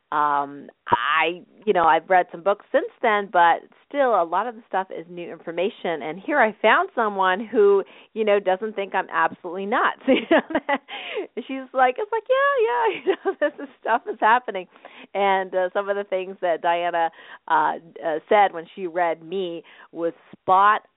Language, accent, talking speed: English, American, 180 wpm